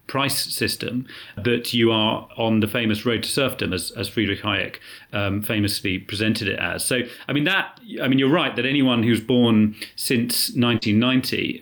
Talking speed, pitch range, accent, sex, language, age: 175 wpm, 100-115 Hz, British, male, English, 30-49